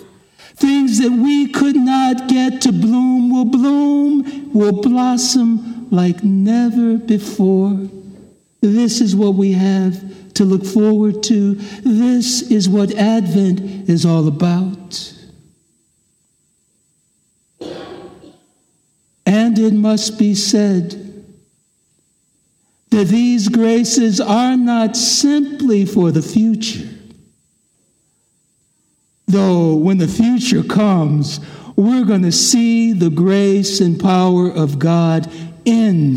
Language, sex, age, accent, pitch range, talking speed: English, male, 60-79, American, 175-235 Hz, 100 wpm